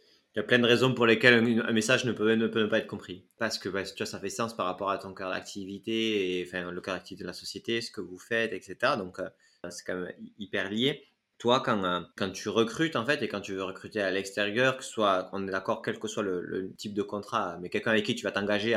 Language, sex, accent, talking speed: French, male, French, 275 wpm